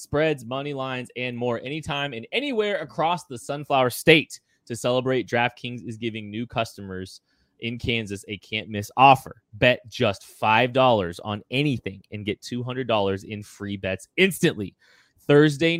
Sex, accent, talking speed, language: male, American, 145 wpm, English